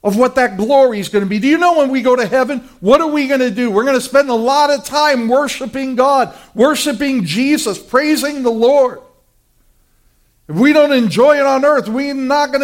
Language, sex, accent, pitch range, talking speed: English, male, American, 225-290 Hz, 225 wpm